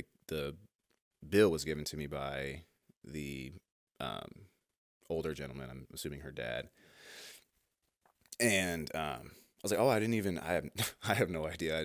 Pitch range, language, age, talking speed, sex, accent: 75-85 Hz, English, 30-49, 155 wpm, male, American